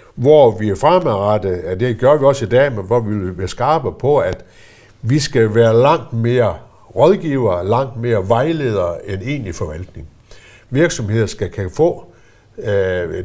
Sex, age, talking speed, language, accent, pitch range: male, 60-79, 165 wpm, Danish, native, 95-125 Hz